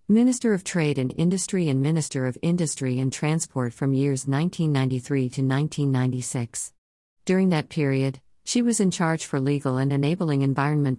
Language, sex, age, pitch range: English, female, 50-69, 130-160 Hz